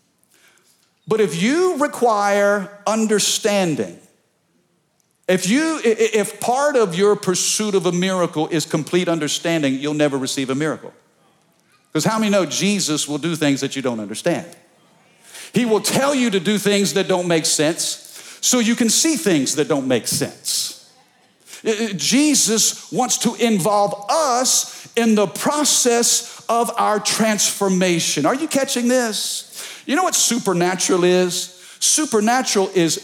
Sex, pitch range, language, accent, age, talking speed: male, 180-235 Hz, English, American, 50-69, 140 wpm